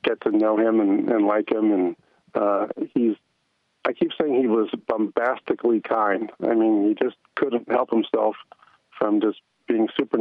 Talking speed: 170 wpm